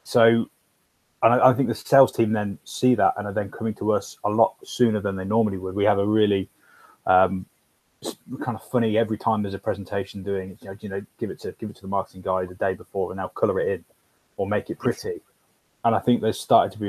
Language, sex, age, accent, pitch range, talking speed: English, male, 20-39, British, 100-115 Hz, 250 wpm